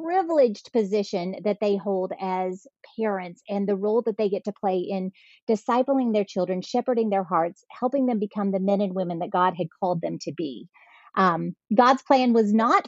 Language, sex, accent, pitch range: English, female, American, 200-250 Hz